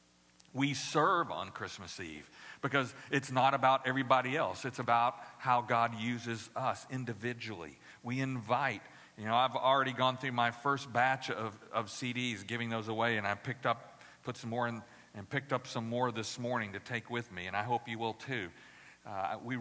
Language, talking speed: English, 190 wpm